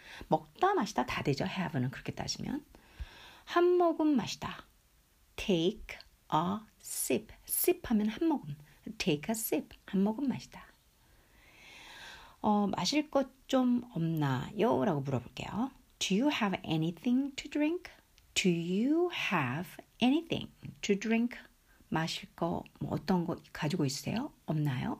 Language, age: Korean, 60-79